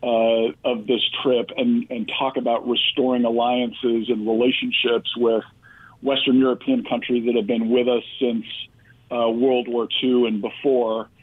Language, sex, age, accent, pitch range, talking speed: English, male, 50-69, American, 120-135 Hz, 150 wpm